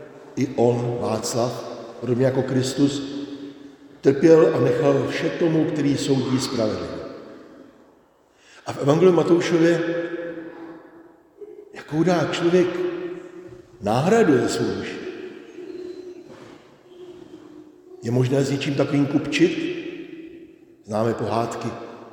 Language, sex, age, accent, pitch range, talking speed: Czech, male, 60-79, native, 125-170 Hz, 85 wpm